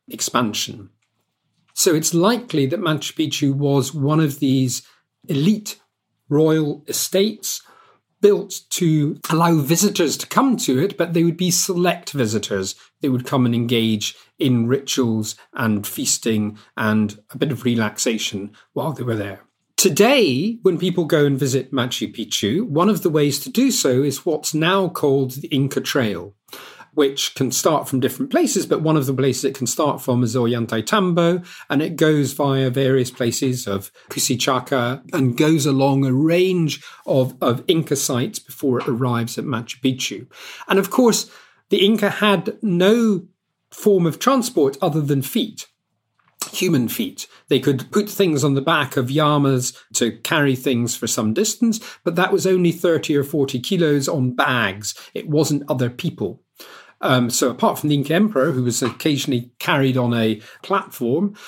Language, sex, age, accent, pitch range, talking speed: English, male, 40-59, British, 125-170 Hz, 160 wpm